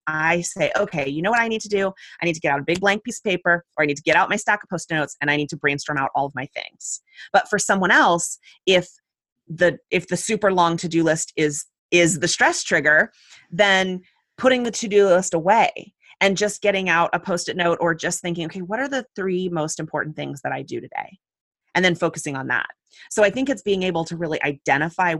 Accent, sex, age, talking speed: American, female, 30-49, 240 wpm